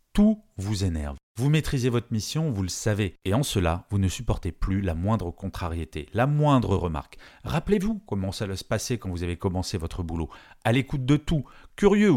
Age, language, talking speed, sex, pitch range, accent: 40-59, French, 190 wpm, male, 95-140 Hz, French